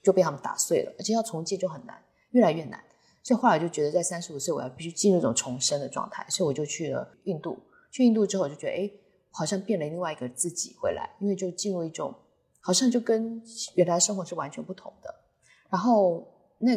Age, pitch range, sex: 20-39, 155-200 Hz, female